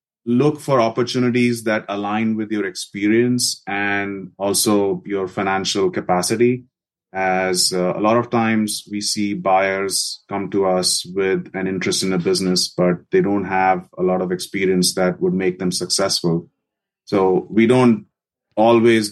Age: 30-49